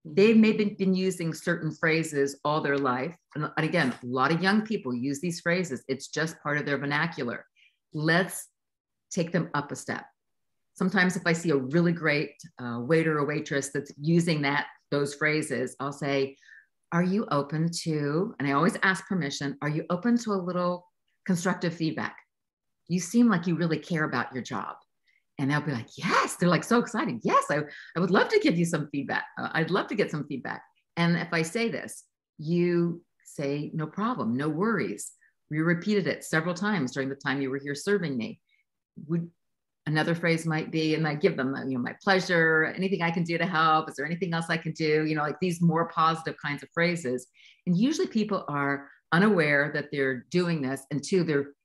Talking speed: 200 wpm